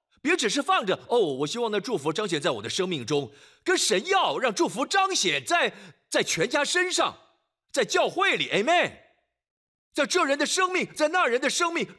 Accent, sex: native, male